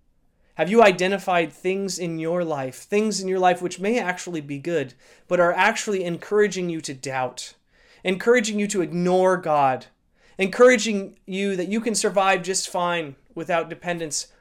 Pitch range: 155-195 Hz